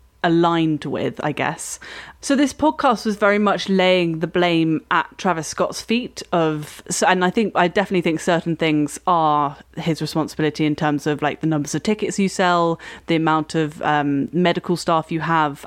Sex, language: female, English